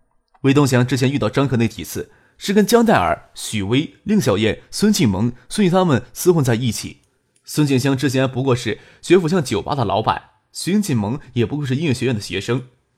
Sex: male